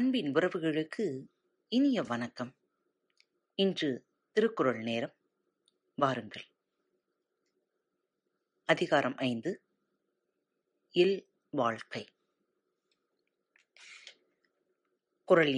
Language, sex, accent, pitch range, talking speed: Tamil, female, native, 150-250 Hz, 50 wpm